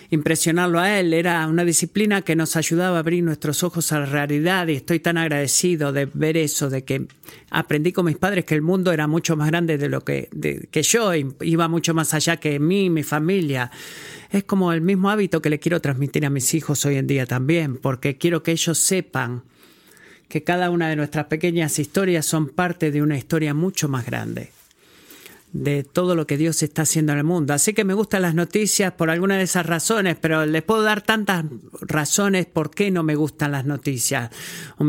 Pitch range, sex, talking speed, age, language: 145-175 Hz, male, 210 wpm, 50-69, Spanish